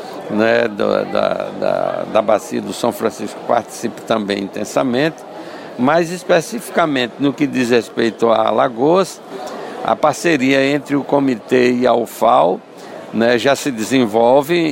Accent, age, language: Brazilian, 60-79, Portuguese